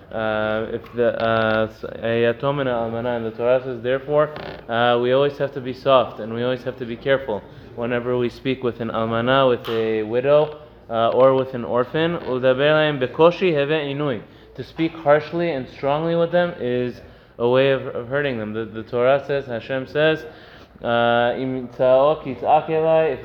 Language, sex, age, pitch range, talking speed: English, male, 20-39, 120-145 Hz, 150 wpm